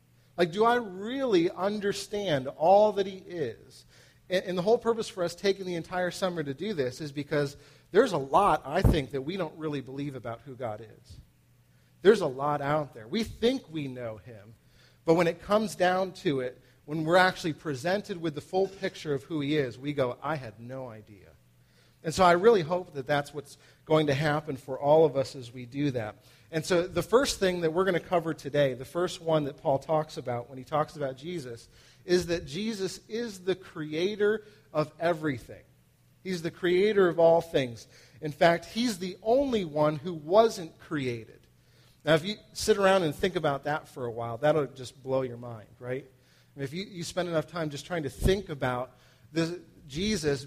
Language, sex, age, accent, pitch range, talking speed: English, male, 40-59, American, 135-185 Hz, 200 wpm